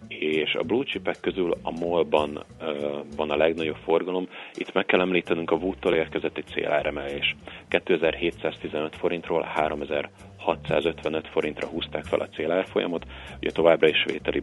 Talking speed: 135 wpm